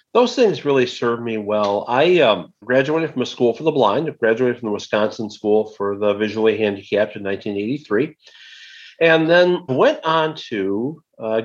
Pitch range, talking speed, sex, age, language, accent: 105-125 Hz, 170 wpm, male, 50-69, English, American